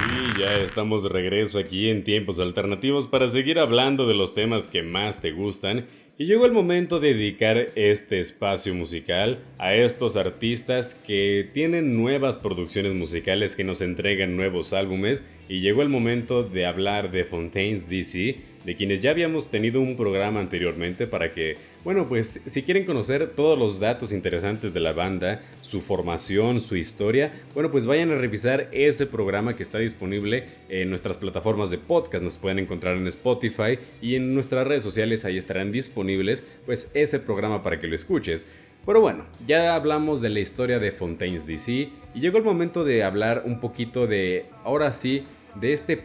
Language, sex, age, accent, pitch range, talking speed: Spanish, male, 30-49, Mexican, 95-130 Hz, 175 wpm